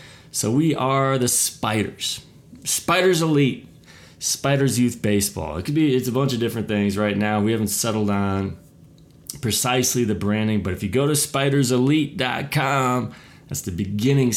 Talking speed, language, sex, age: 155 wpm, English, male, 20-39